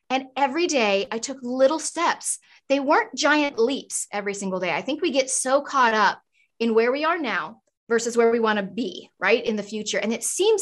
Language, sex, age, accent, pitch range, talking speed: English, female, 20-39, American, 200-270 Hz, 220 wpm